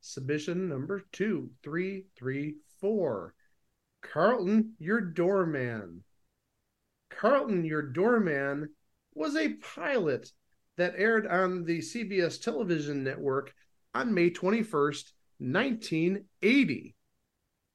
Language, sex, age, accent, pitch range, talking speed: English, male, 50-69, American, 145-210 Hz, 80 wpm